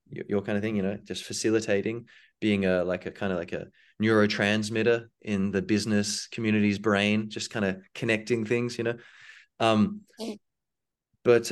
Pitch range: 95-110 Hz